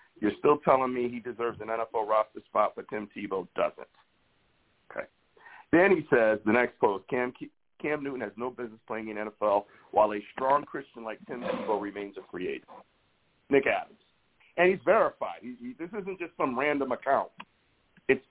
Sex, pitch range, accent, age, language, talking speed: male, 110-170 Hz, American, 50-69, English, 180 wpm